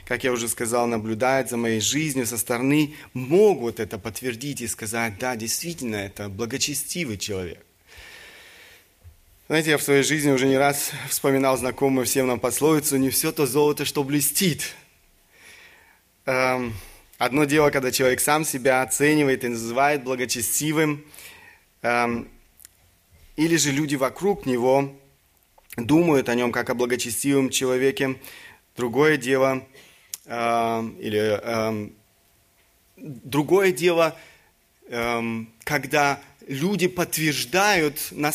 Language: Russian